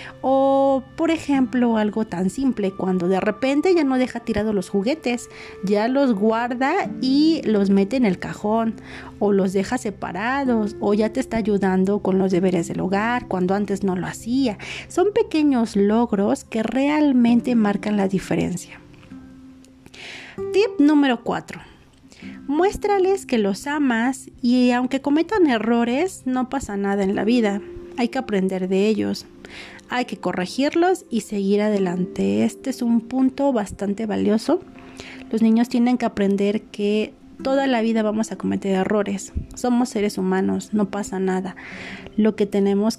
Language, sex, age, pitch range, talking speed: Spanish, female, 40-59, 195-265 Hz, 150 wpm